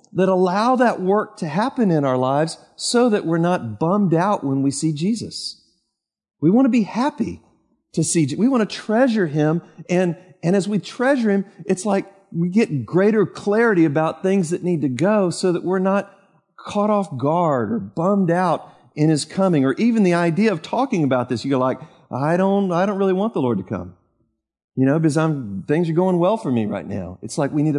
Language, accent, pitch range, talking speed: English, American, 150-195 Hz, 215 wpm